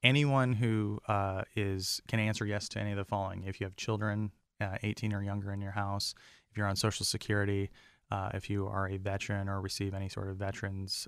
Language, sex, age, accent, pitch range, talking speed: English, male, 20-39, American, 100-105 Hz, 210 wpm